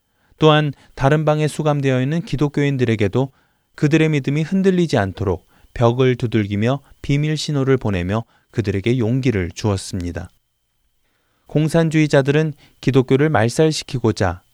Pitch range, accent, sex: 100-140 Hz, native, male